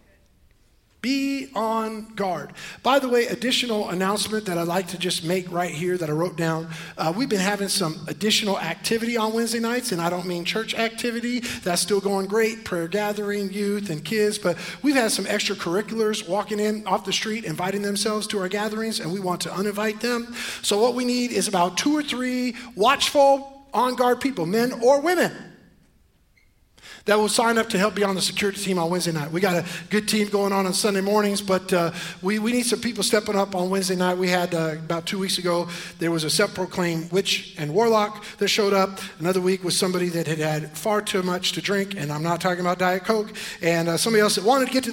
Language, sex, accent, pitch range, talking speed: English, male, American, 180-230 Hz, 215 wpm